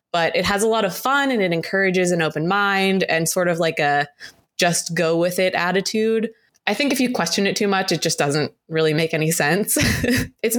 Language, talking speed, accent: English, 220 wpm, American